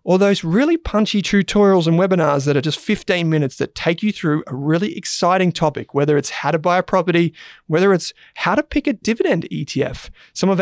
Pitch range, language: 145-190 Hz, English